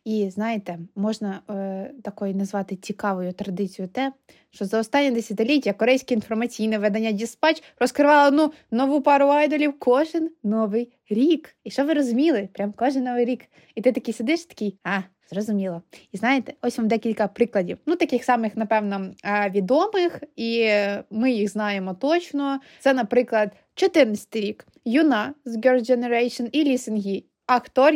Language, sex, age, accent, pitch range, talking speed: Ukrainian, female, 20-39, native, 205-255 Hz, 145 wpm